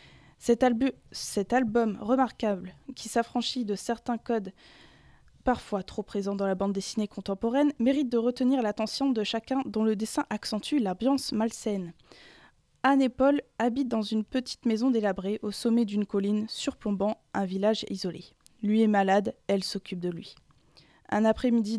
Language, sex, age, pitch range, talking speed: French, female, 20-39, 205-240 Hz, 150 wpm